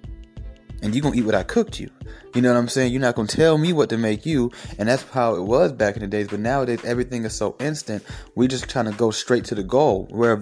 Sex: male